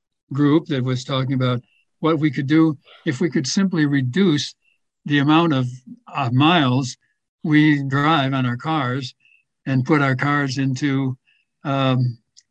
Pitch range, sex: 130-170 Hz, male